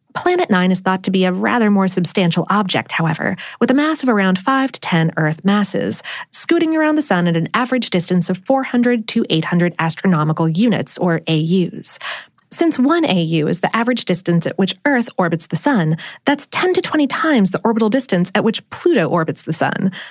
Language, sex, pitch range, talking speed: English, female, 175-255 Hz, 195 wpm